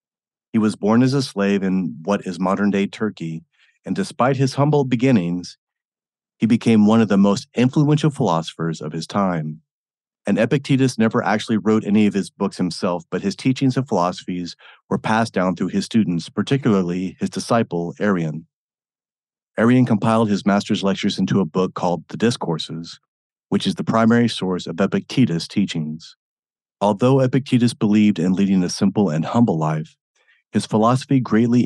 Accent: American